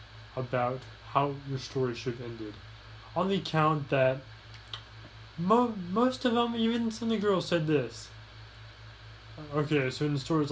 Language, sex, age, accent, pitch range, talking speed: English, male, 20-39, American, 110-145 Hz, 155 wpm